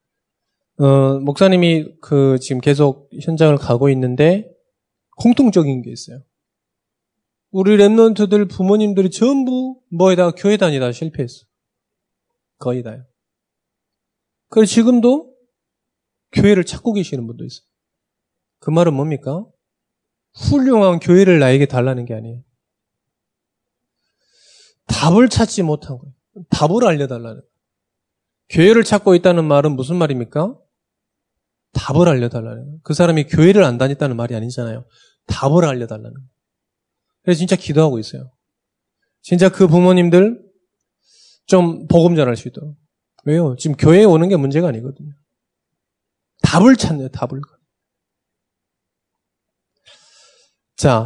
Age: 20-39